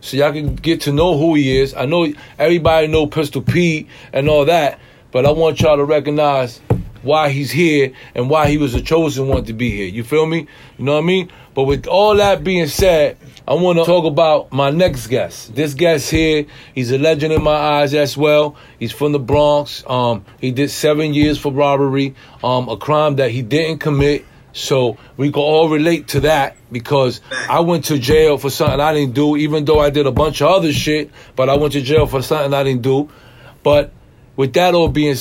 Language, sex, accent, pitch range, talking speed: English, male, American, 125-150 Hz, 220 wpm